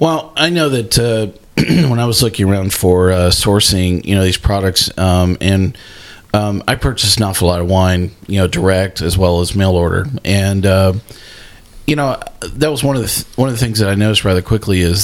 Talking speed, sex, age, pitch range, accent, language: 220 wpm, male, 40-59, 95-115 Hz, American, English